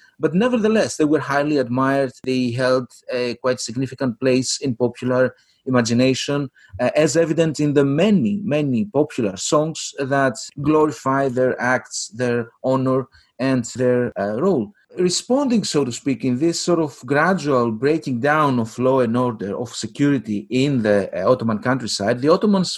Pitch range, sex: 125-165 Hz, male